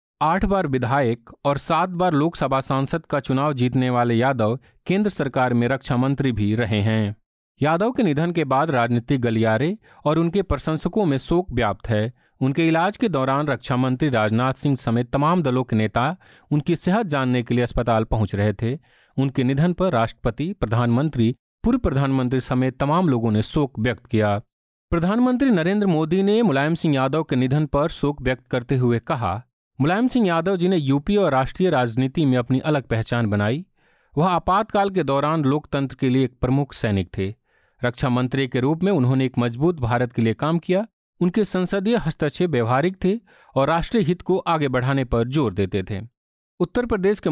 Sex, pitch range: male, 120-170 Hz